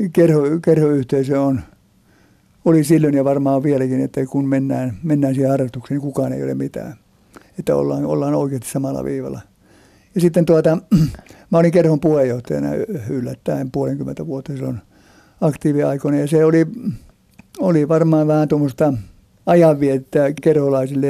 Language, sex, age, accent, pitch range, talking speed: Finnish, male, 60-79, native, 120-155 Hz, 130 wpm